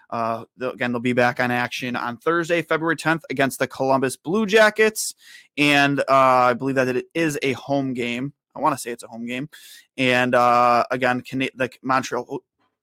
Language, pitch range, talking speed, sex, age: English, 120-145 Hz, 195 wpm, male, 20-39